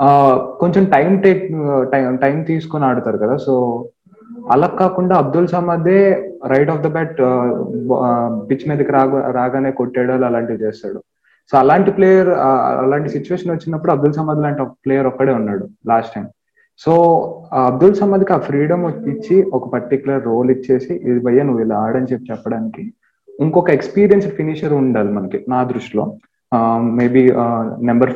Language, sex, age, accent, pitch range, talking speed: Telugu, male, 20-39, native, 125-155 Hz, 135 wpm